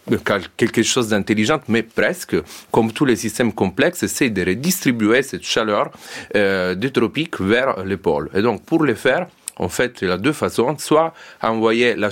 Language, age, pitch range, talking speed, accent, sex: French, 40-59, 95-125 Hz, 180 wpm, Italian, male